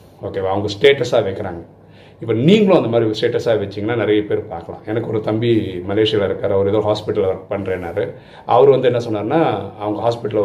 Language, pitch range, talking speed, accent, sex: Tamil, 100-120 Hz, 170 wpm, native, male